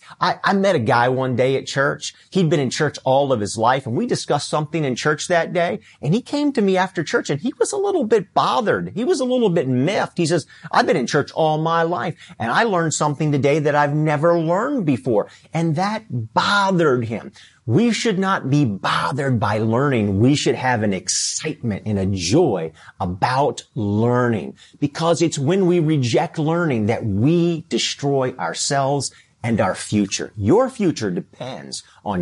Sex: male